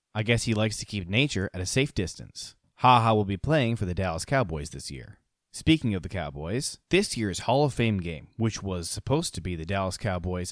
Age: 20-39